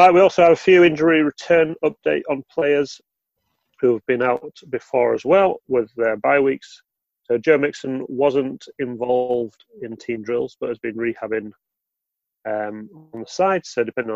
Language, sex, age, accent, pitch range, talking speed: English, male, 30-49, British, 115-155 Hz, 170 wpm